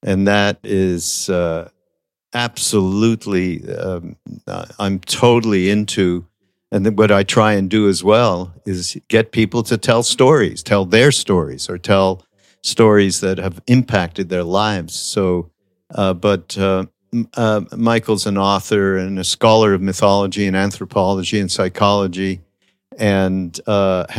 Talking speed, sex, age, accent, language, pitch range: 130 wpm, male, 50-69, American, English, 95-110 Hz